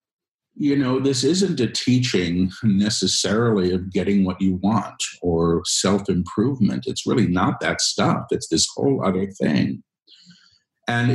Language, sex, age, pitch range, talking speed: English, male, 50-69, 95-120 Hz, 135 wpm